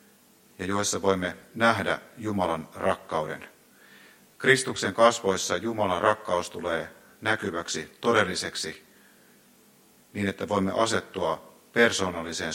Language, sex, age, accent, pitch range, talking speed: Finnish, male, 50-69, native, 100-140 Hz, 85 wpm